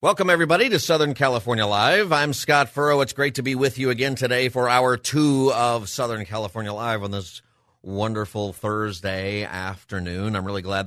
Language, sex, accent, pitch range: English, male, American, 100-130 Hz